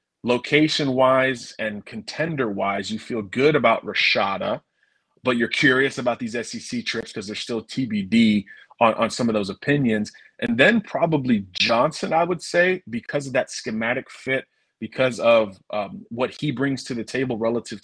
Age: 30-49